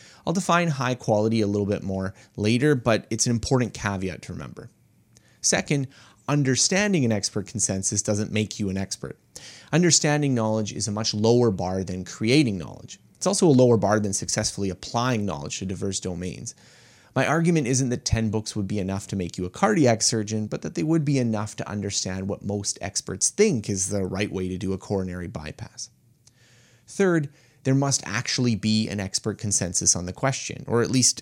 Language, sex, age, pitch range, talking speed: English, male, 30-49, 100-125 Hz, 190 wpm